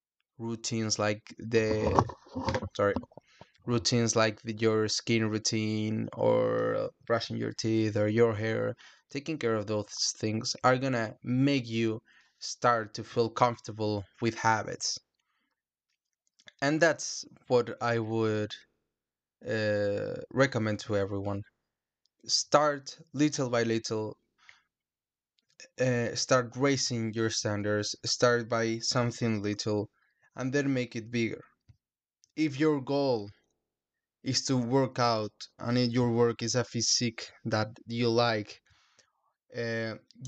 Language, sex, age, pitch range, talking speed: English, male, 20-39, 110-125 Hz, 115 wpm